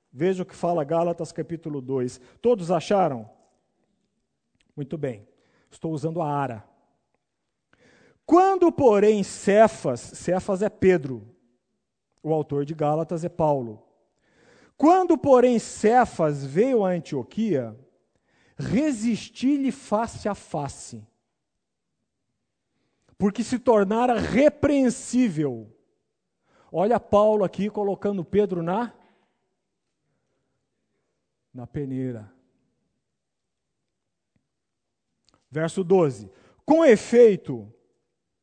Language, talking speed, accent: Portuguese, 85 wpm, Brazilian